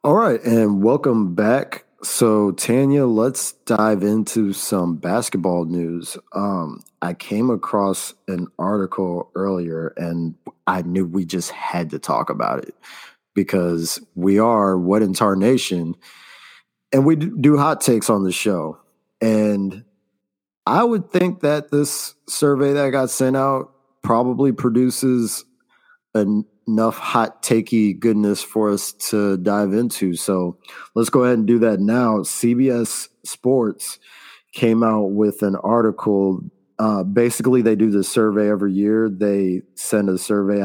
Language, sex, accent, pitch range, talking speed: English, male, American, 95-120 Hz, 135 wpm